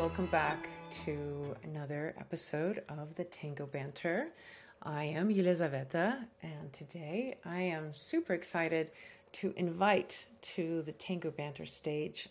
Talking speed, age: 120 wpm, 30-49